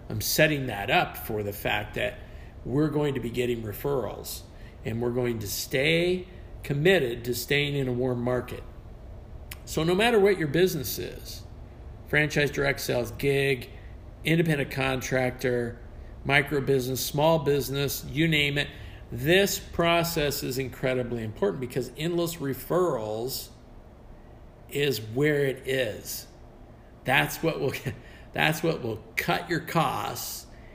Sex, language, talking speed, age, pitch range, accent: male, English, 135 wpm, 50-69, 115-150 Hz, American